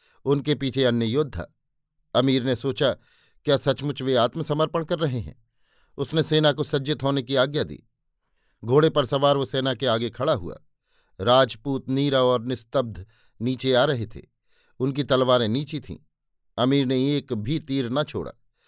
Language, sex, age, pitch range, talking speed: Hindi, male, 50-69, 125-145 Hz, 160 wpm